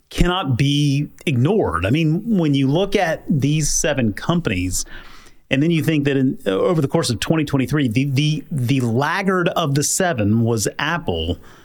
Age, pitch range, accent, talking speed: 30-49, 115-155 Hz, American, 160 wpm